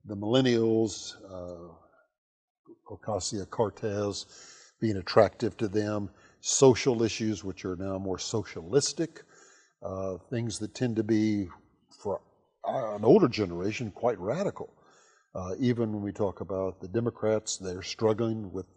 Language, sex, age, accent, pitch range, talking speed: English, male, 50-69, American, 100-125 Hz, 120 wpm